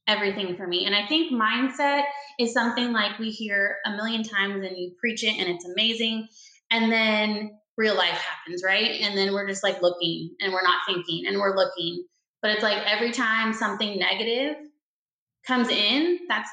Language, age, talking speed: English, 20-39, 185 wpm